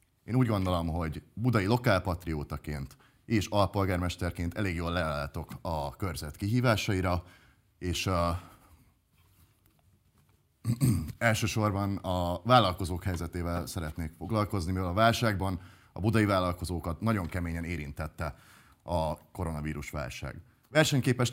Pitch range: 85-115 Hz